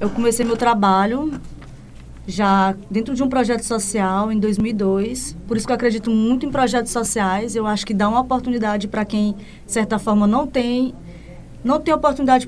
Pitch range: 205-250 Hz